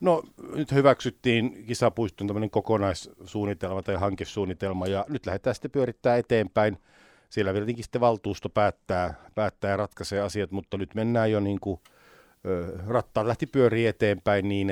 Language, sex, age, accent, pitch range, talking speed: Finnish, male, 50-69, native, 90-105 Hz, 130 wpm